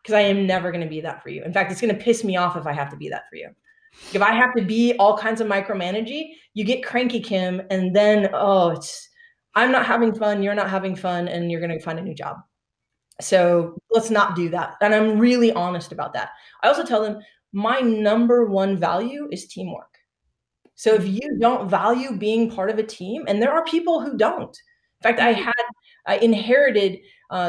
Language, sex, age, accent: English, female, 20-39, American